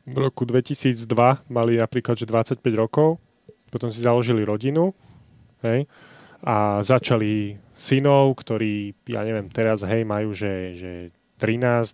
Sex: male